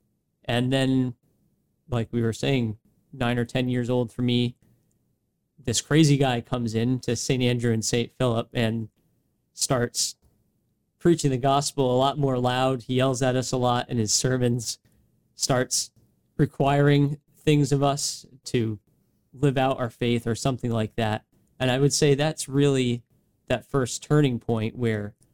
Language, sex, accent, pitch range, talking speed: English, male, American, 115-135 Hz, 160 wpm